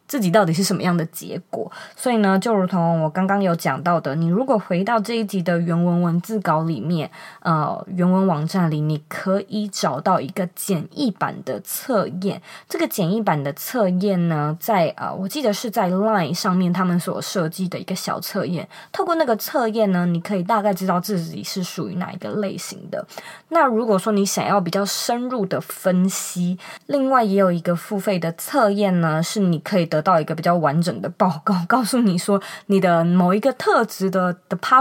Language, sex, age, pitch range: Chinese, female, 20-39, 175-210 Hz